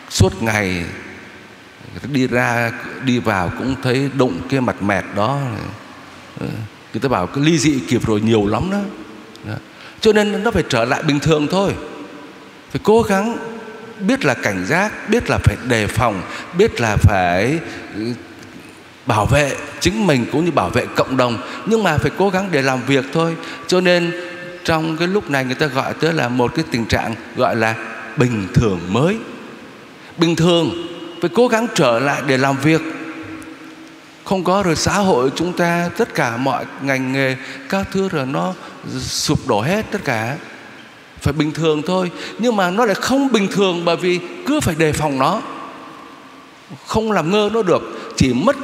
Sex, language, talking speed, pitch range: male, Vietnamese, 180 wpm, 120-175 Hz